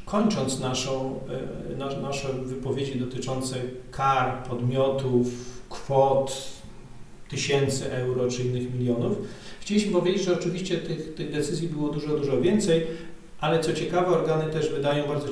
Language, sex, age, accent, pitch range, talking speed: Polish, male, 40-59, native, 130-160 Hz, 120 wpm